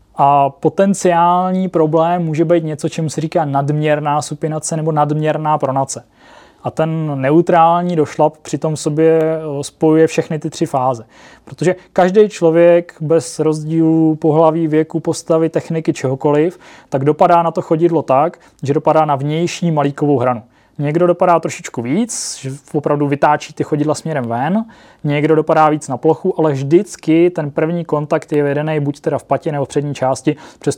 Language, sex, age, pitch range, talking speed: Czech, male, 20-39, 140-165 Hz, 155 wpm